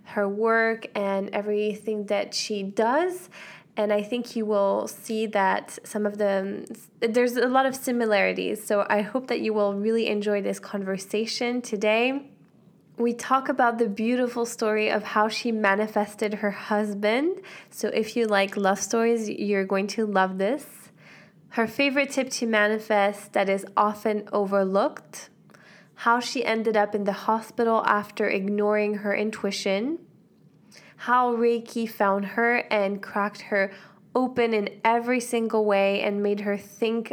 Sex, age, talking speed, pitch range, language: female, 20-39, 150 wpm, 200-230 Hz, English